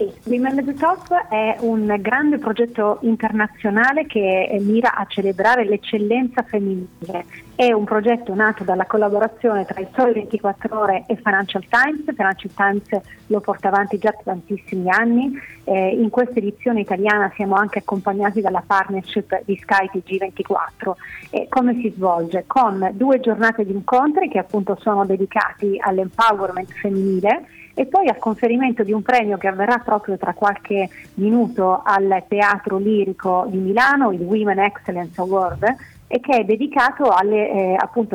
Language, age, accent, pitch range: Italian, 30-49, native, 195-230 Hz